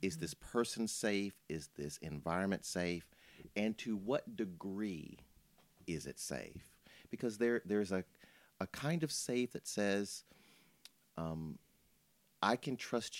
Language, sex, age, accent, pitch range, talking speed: English, male, 40-59, American, 80-110 Hz, 130 wpm